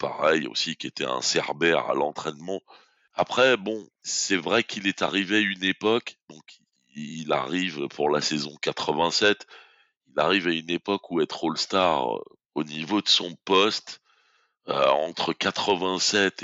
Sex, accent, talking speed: male, French, 155 wpm